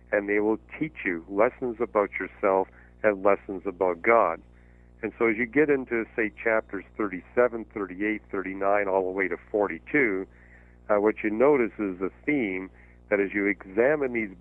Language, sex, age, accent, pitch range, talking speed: English, male, 50-69, American, 85-110 Hz, 165 wpm